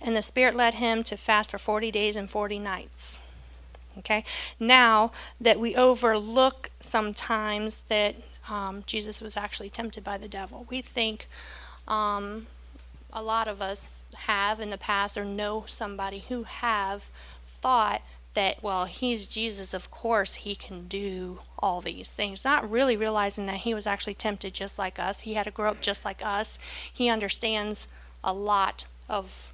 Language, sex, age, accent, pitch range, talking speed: English, female, 40-59, American, 190-235 Hz, 165 wpm